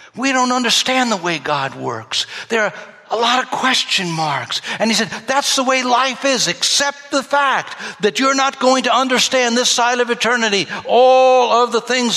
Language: English